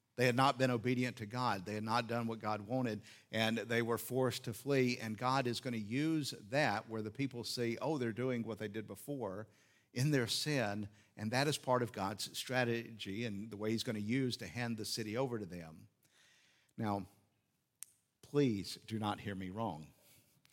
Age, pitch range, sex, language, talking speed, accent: 50-69, 100-125 Hz, male, English, 200 wpm, American